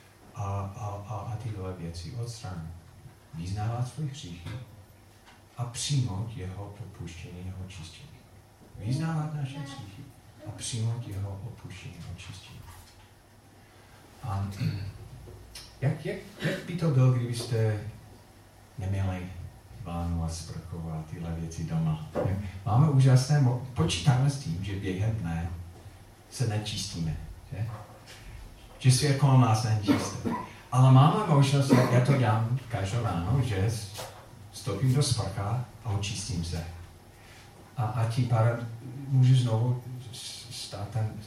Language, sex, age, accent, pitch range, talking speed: Czech, male, 40-59, native, 100-130 Hz, 110 wpm